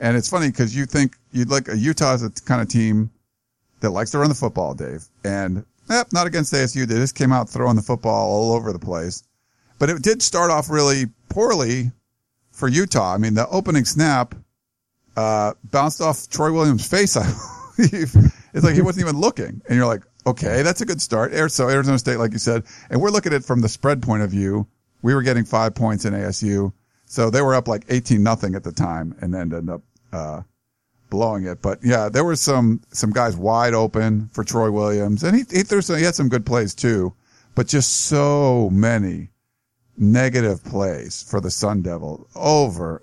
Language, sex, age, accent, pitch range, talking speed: English, male, 50-69, American, 105-130 Hz, 210 wpm